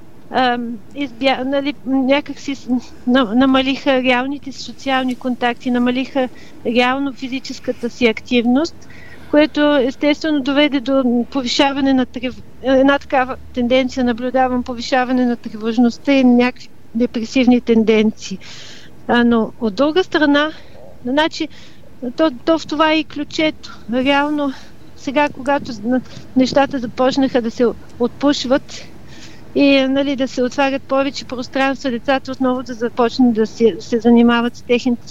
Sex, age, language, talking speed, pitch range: female, 50-69, Bulgarian, 115 wpm, 240-280 Hz